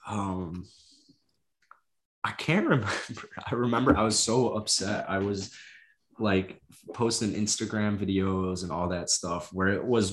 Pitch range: 95-115 Hz